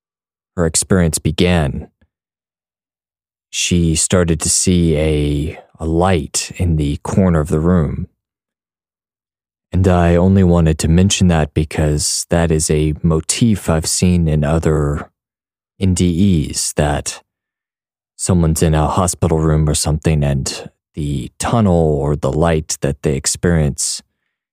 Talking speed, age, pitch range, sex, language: 120 wpm, 20-39, 75-90 Hz, male, English